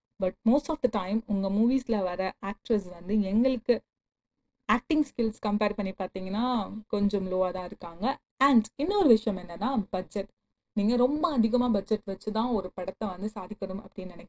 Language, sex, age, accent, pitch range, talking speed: Tamil, female, 30-49, native, 190-235 Hz, 170 wpm